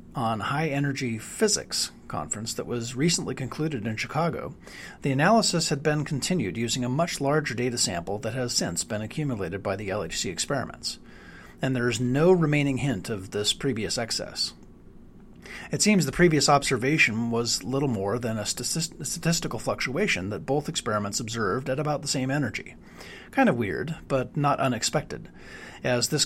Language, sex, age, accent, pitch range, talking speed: English, male, 40-59, American, 110-150 Hz, 160 wpm